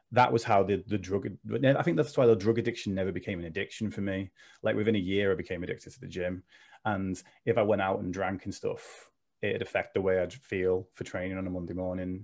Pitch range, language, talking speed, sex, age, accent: 95-120 Hz, English, 245 wpm, male, 20-39, British